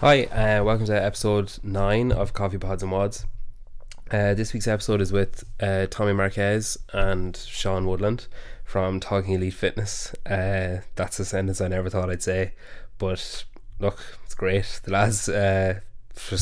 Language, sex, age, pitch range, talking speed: English, male, 20-39, 95-105 Hz, 160 wpm